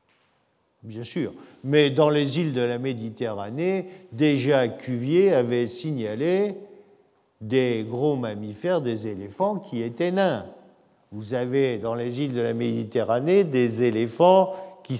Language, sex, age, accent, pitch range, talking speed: French, male, 50-69, French, 115-165 Hz, 130 wpm